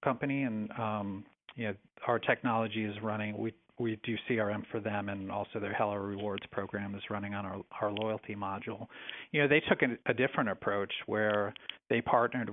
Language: English